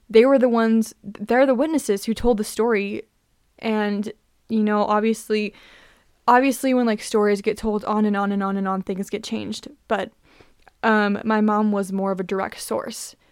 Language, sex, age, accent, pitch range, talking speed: English, female, 20-39, American, 205-230 Hz, 185 wpm